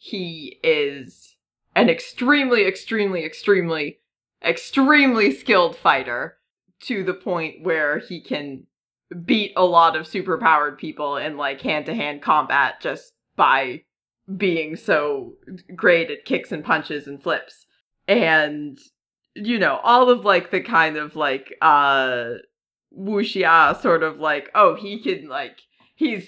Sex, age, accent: female, 30-49, American